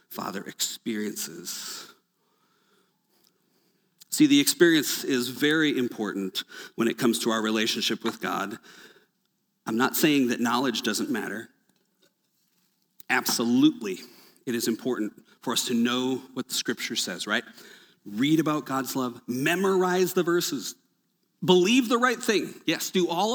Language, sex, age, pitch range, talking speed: English, male, 40-59, 125-185 Hz, 130 wpm